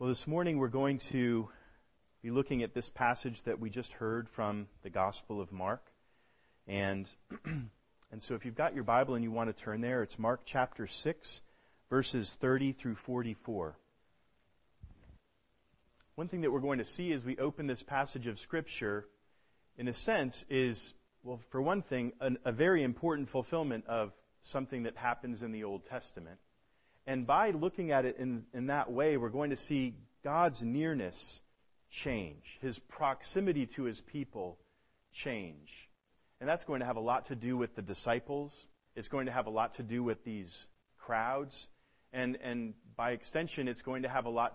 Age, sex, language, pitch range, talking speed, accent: 40-59, male, English, 115-140 Hz, 180 wpm, American